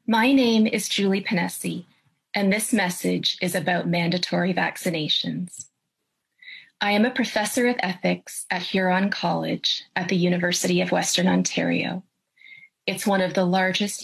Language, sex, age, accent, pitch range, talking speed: English, female, 30-49, American, 180-220 Hz, 135 wpm